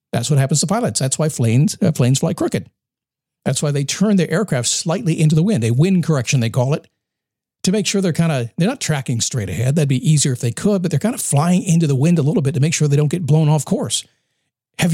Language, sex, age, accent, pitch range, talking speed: English, male, 50-69, American, 130-170 Hz, 265 wpm